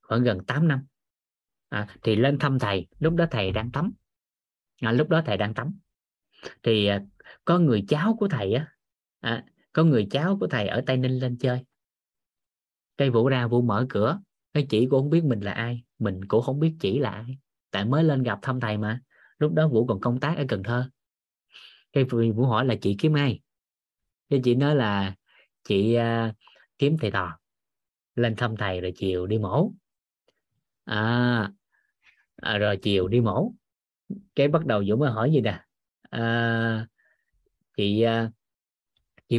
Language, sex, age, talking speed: Vietnamese, male, 20-39, 175 wpm